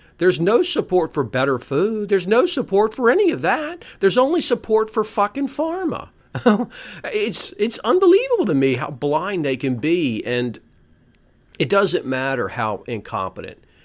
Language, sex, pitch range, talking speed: English, male, 135-190 Hz, 150 wpm